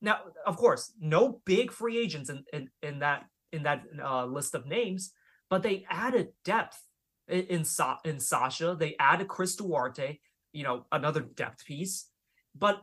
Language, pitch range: English, 150-195 Hz